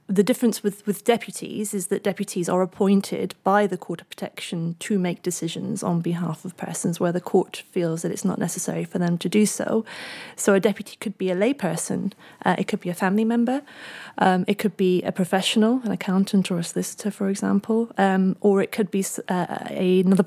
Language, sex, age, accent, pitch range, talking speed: English, female, 30-49, British, 170-200 Hz, 205 wpm